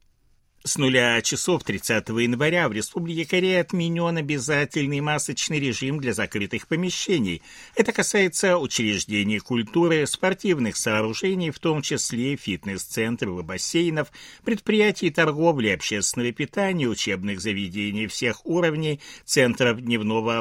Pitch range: 110-165 Hz